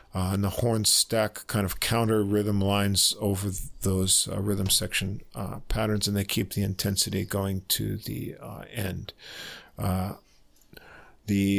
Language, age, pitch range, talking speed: English, 50-69, 100-125 Hz, 155 wpm